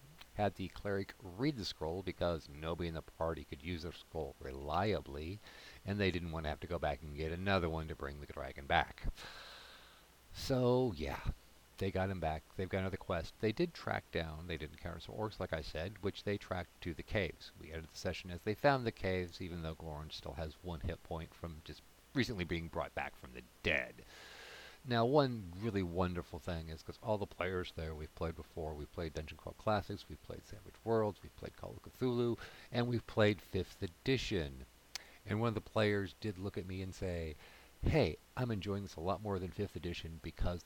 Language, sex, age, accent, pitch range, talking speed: English, male, 50-69, American, 80-100 Hz, 210 wpm